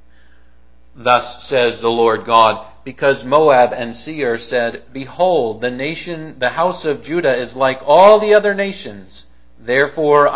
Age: 50-69